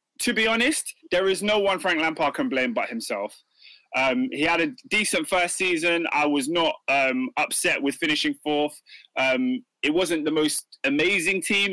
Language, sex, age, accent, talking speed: English, male, 20-39, British, 180 wpm